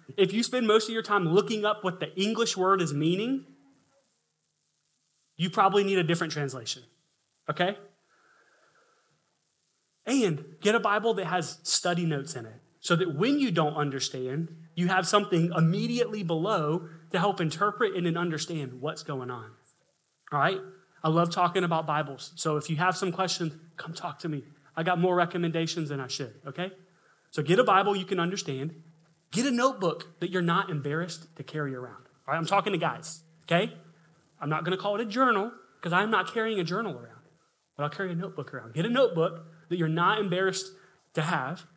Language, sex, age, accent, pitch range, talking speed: English, male, 30-49, American, 160-195 Hz, 185 wpm